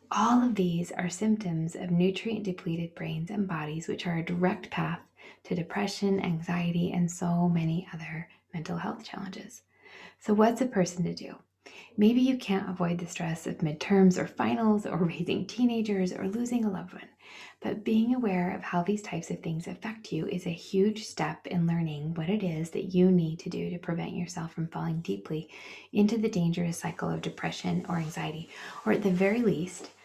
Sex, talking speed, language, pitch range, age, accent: female, 190 wpm, English, 170-205 Hz, 20-39, American